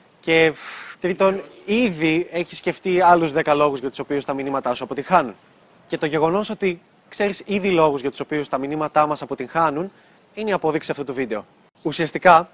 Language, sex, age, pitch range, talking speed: Greek, male, 20-39, 150-200 Hz, 170 wpm